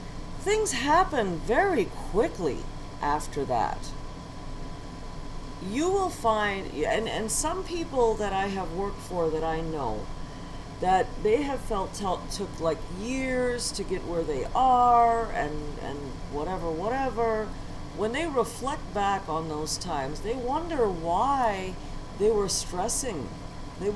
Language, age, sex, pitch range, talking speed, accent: English, 40-59, female, 185-240 Hz, 130 wpm, American